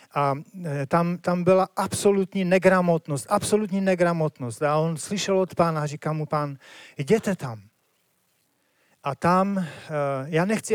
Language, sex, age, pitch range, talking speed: Czech, male, 40-59, 155-200 Hz, 130 wpm